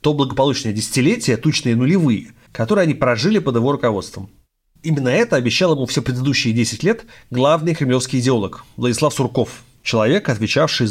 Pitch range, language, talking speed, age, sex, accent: 110-140 Hz, Russian, 145 wpm, 30-49, male, native